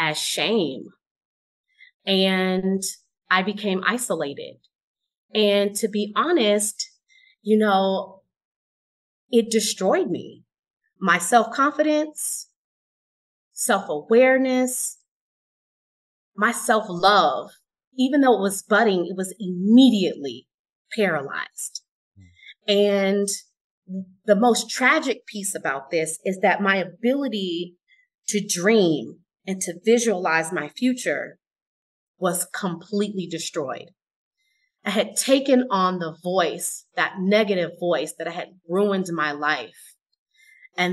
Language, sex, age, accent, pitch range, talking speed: English, female, 30-49, American, 180-230 Hz, 95 wpm